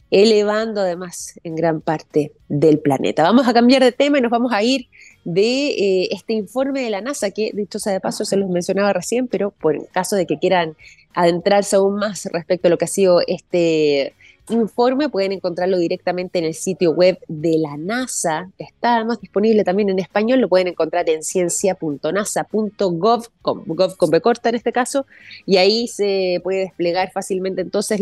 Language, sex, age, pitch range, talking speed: Spanish, female, 20-39, 170-230 Hz, 180 wpm